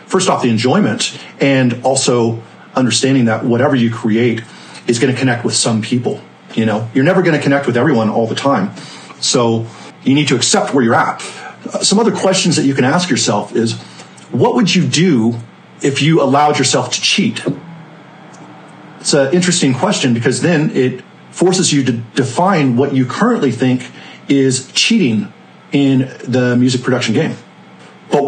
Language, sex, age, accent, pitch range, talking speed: English, male, 40-59, American, 120-160 Hz, 170 wpm